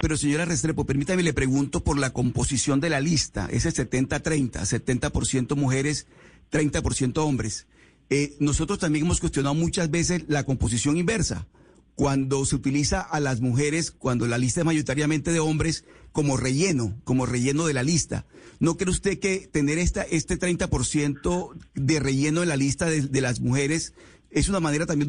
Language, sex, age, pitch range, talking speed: Spanish, male, 40-59, 140-170 Hz, 165 wpm